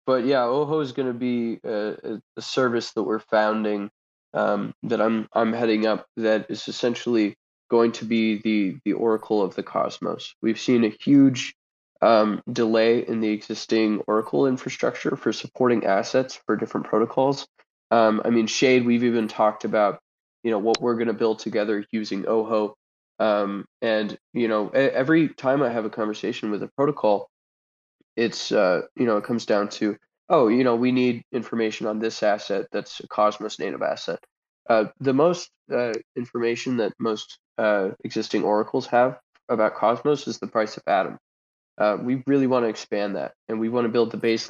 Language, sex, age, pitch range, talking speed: English, male, 20-39, 110-125 Hz, 180 wpm